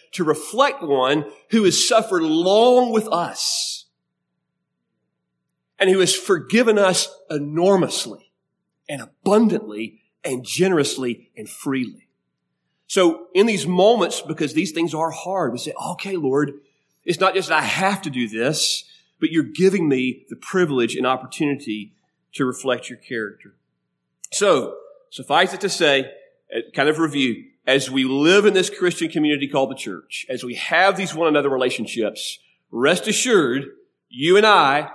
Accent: American